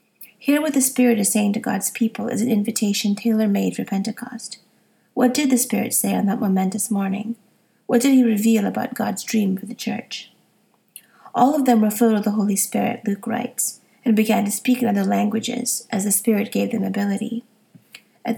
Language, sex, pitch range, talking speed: English, female, 210-240 Hz, 195 wpm